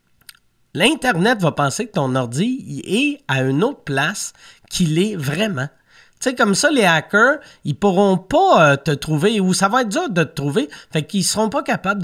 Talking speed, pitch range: 200 wpm, 150-225 Hz